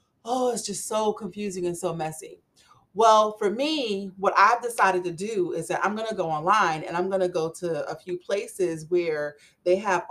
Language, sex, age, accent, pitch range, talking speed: English, female, 30-49, American, 170-200 Hz, 210 wpm